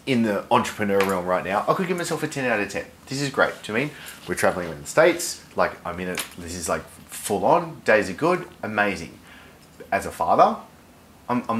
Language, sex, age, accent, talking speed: English, male, 30-49, Australian, 240 wpm